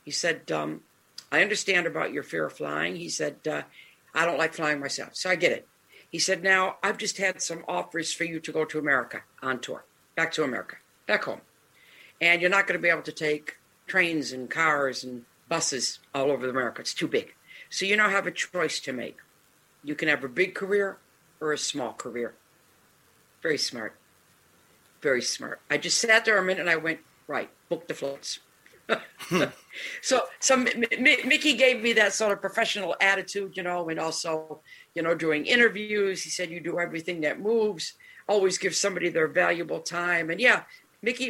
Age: 60-79